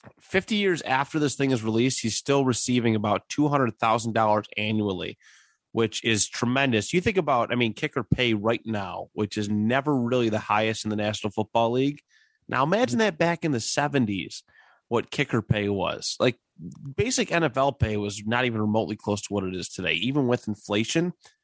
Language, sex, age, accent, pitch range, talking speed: English, male, 30-49, American, 105-135 Hz, 180 wpm